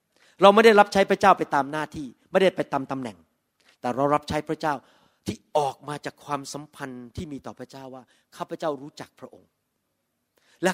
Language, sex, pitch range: Thai, male, 130-170 Hz